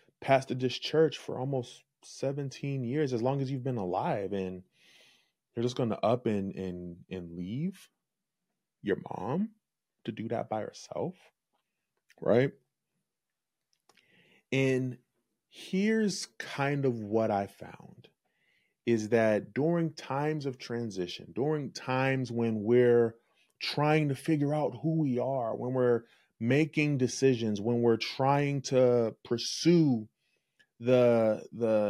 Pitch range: 115-145 Hz